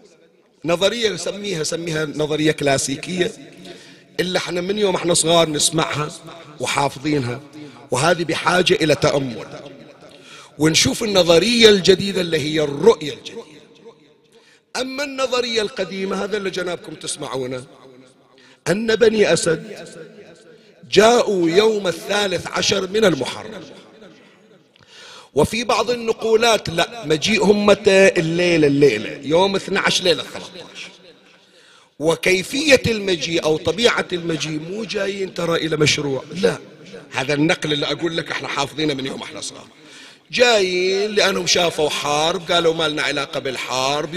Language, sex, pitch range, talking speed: Arabic, male, 150-195 Hz, 110 wpm